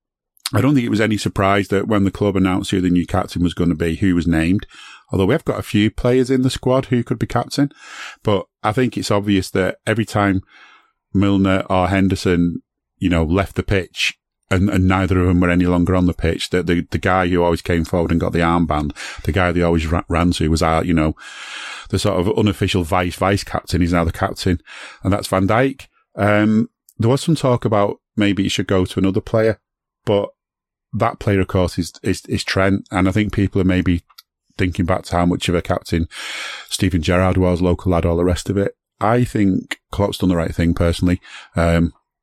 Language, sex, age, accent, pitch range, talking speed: English, male, 40-59, British, 90-105 Hz, 220 wpm